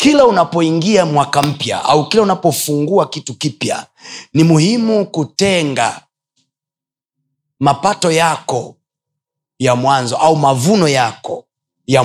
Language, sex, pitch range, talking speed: Swahili, male, 150-215 Hz, 100 wpm